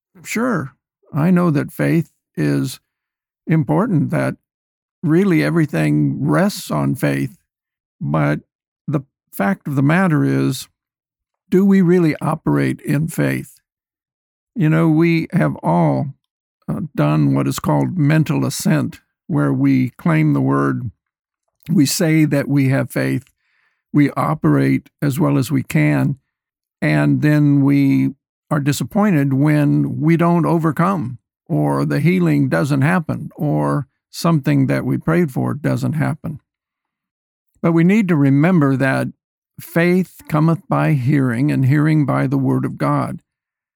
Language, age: English, 60-79